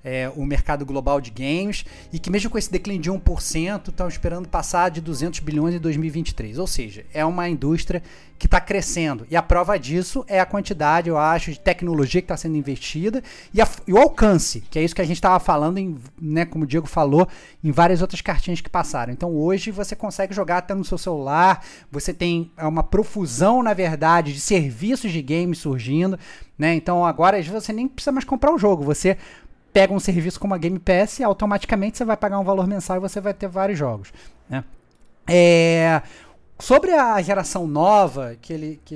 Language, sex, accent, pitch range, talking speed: Portuguese, male, Brazilian, 150-195 Hz, 195 wpm